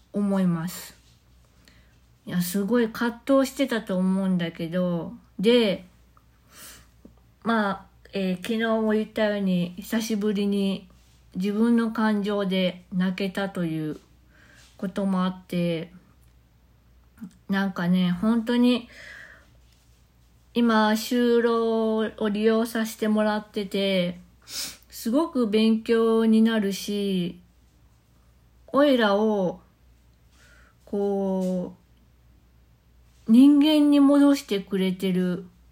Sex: female